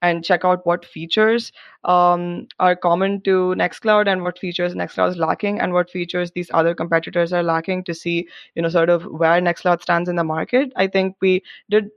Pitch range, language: 160-185 Hz, English